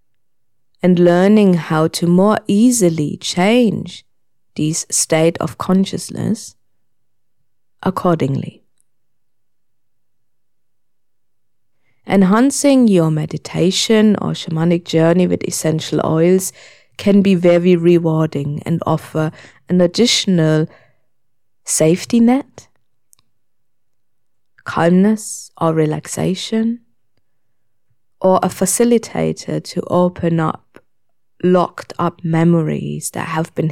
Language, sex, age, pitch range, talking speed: English, female, 20-39, 155-185 Hz, 80 wpm